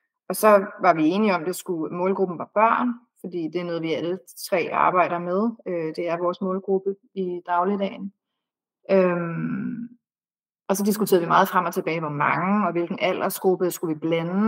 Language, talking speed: Danish, 180 wpm